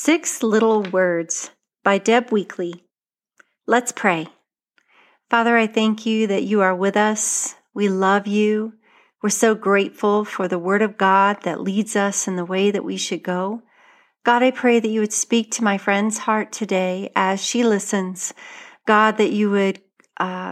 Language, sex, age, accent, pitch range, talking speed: English, female, 40-59, American, 185-220 Hz, 170 wpm